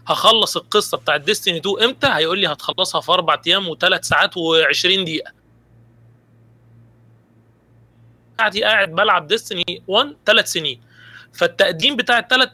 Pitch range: 160-225 Hz